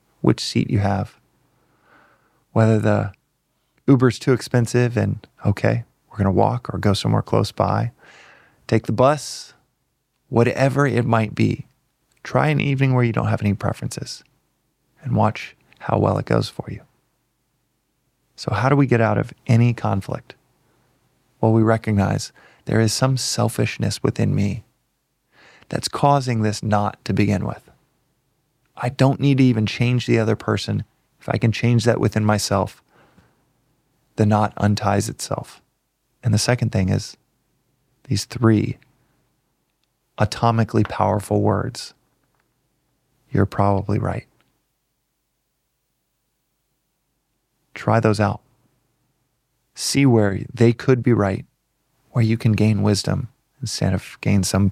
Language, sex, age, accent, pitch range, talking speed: English, male, 20-39, American, 105-130 Hz, 130 wpm